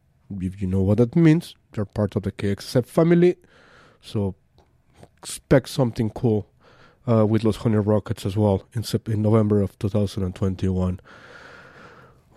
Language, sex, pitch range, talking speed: English, male, 100-120 Hz, 135 wpm